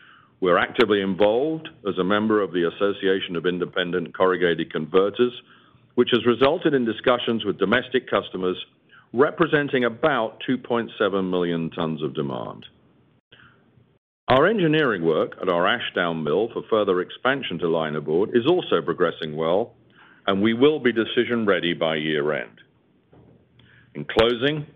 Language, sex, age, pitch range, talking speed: English, male, 50-69, 85-120 Hz, 130 wpm